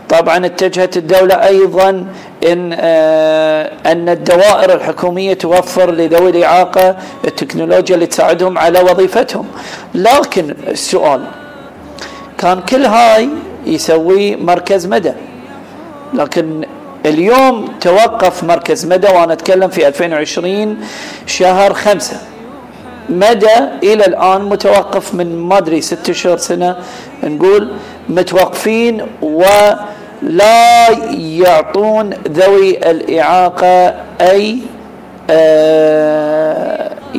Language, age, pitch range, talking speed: Arabic, 40-59, 170-205 Hz, 90 wpm